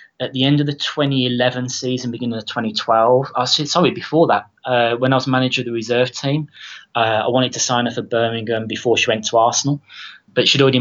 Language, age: English, 20-39